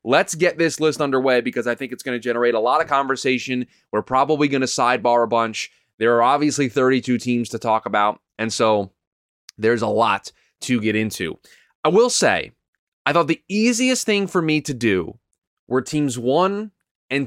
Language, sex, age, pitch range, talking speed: English, male, 20-39, 115-165 Hz, 190 wpm